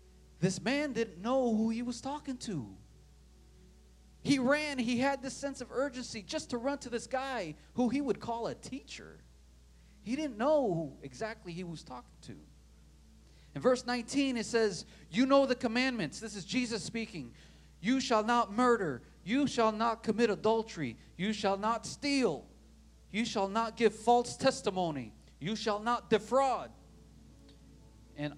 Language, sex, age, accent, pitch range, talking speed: English, male, 40-59, American, 150-240 Hz, 160 wpm